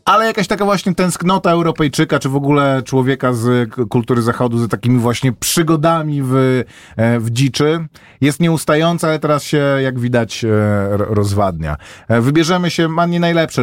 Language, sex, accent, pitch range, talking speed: Polish, male, native, 125-155 Hz, 145 wpm